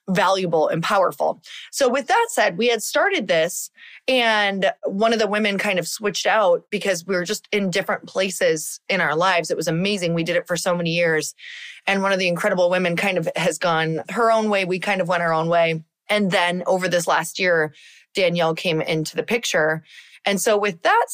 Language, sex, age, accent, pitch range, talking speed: English, female, 20-39, American, 170-215 Hz, 215 wpm